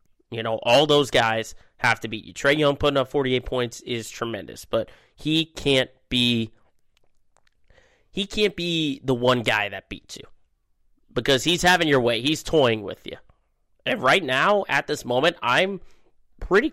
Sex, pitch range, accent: male, 120-150 Hz, American